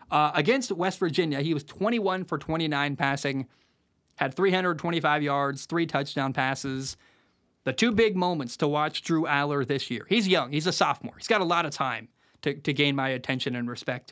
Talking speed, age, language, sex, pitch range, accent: 185 wpm, 20-39, English, male, 140-185 Hz, American